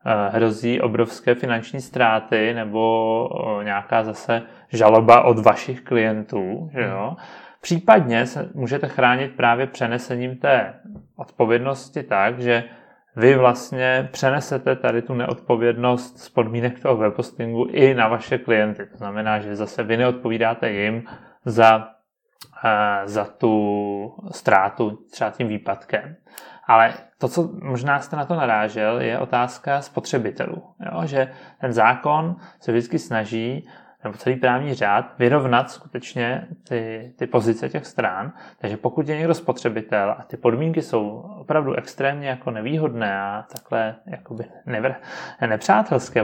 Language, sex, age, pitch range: Czech, male, 30-49, 115-135 Hz